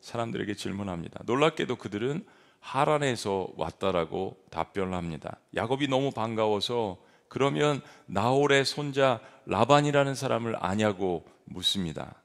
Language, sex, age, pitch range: Korean, male, 40-59, 105-140 Hz